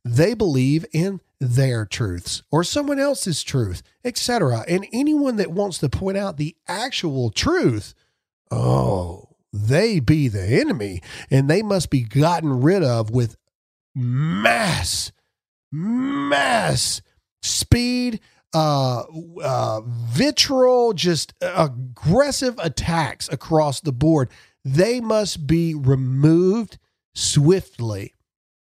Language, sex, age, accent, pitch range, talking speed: English, male, 40-59, American, 115-165 Hz, 105 wpm